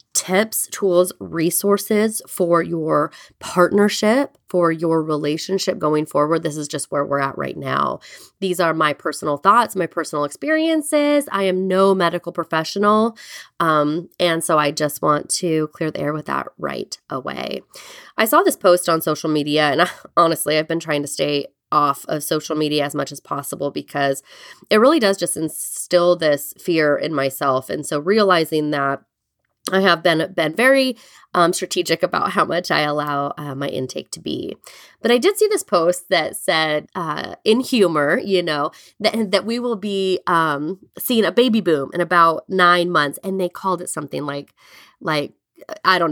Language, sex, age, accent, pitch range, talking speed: English, female, 20-39, American, 155-210 Hz, 175 wpm